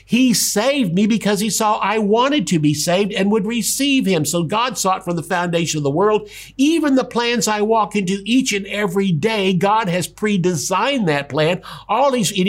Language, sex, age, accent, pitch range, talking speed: English, male, 50-69, American, 155-220 Hz, 200 wpm